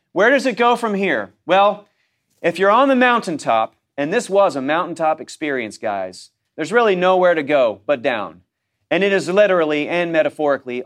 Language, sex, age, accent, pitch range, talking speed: English, male, 40-59, American, 120-160 Hz, 175 wpm